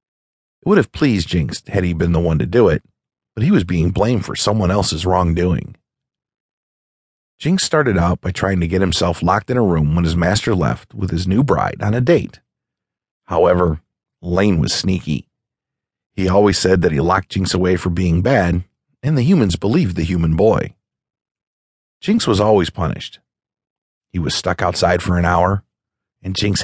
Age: 40-59